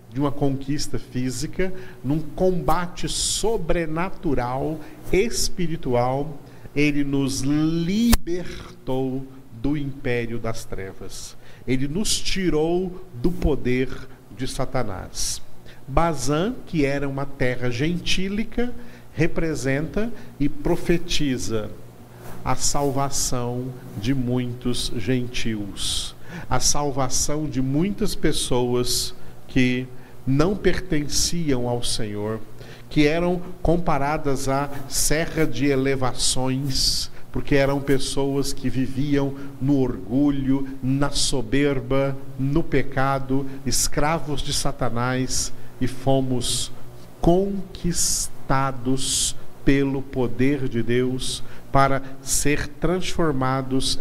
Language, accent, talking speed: Portuguese, Brazilian, 85 wpm